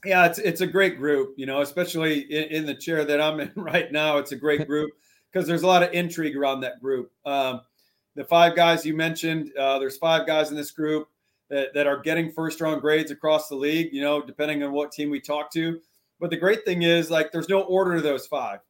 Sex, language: male, English